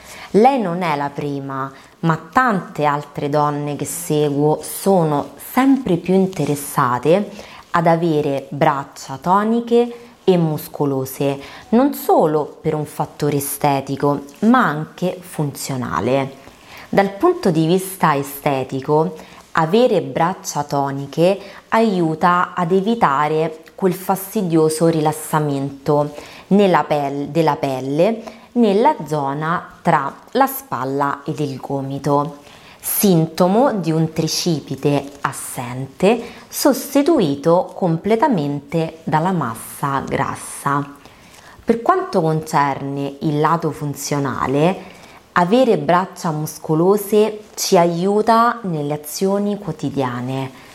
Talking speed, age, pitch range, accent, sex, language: 90 wpm, 20-39, 145-190 Hz, native, female, Italian